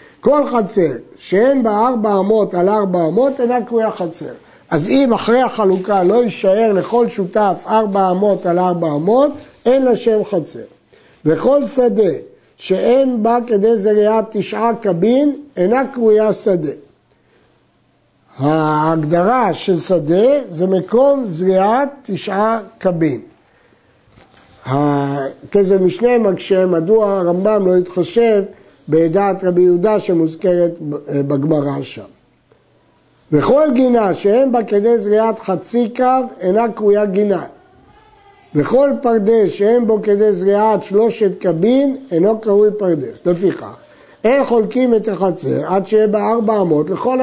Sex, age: male, 50-69